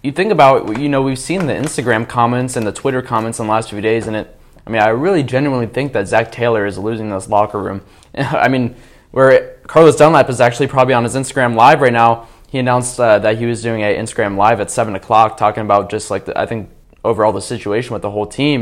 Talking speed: 240 wpm